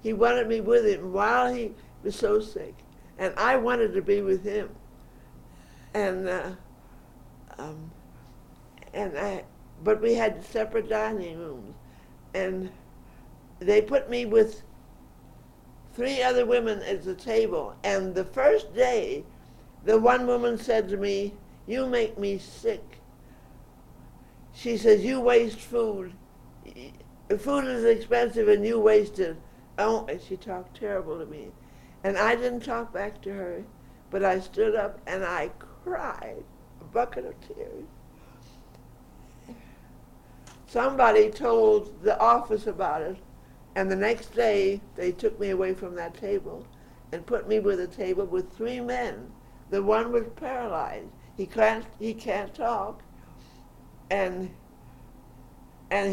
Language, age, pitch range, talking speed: English, 60-79, 195-240 Hz, 135 wpm